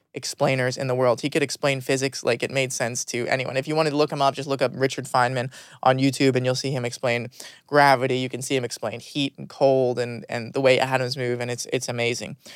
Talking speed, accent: 250 wpm, American